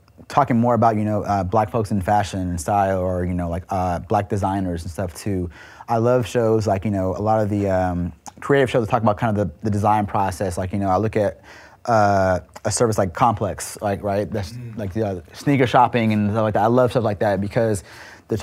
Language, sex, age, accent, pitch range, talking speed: English, male, 30-49, American, 95-115 Hz, 240 wpm